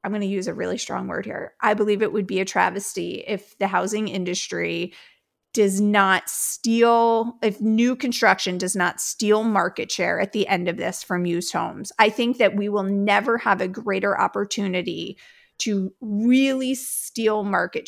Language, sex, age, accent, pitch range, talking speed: English, female, 30-49, American, 195-245 Hz, 180 wpm